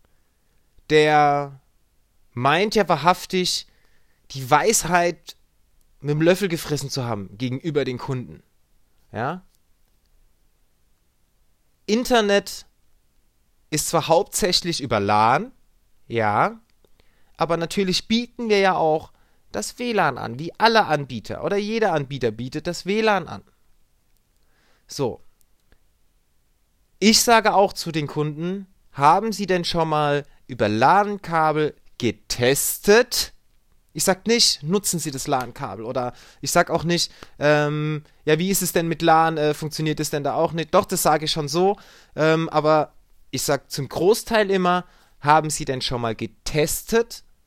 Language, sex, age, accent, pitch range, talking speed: German, male, 30-49, German, 120-180 Hz, 130 wpm